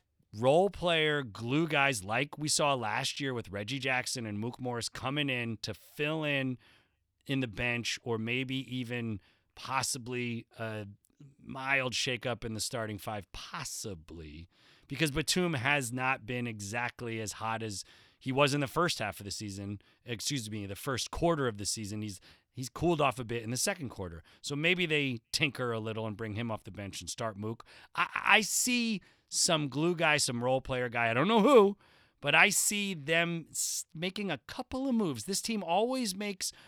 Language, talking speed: English, 185 wpm